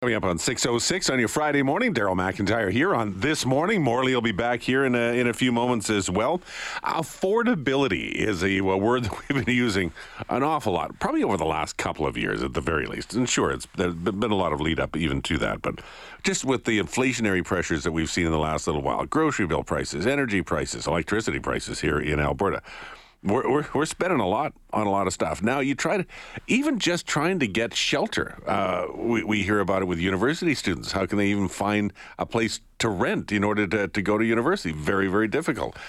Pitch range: 95-130 Hz